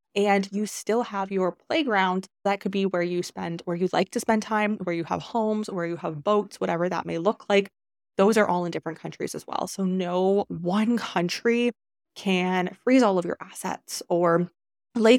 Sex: female